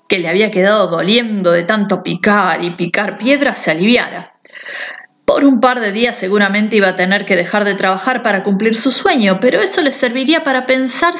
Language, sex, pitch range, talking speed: Spanish, female, 185-235 Hz, 195 wpm